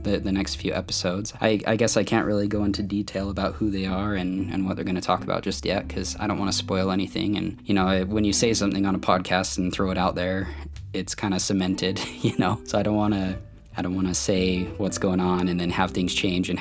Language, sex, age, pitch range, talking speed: English, male, 20-39, 90-105 Hz, 275 wpm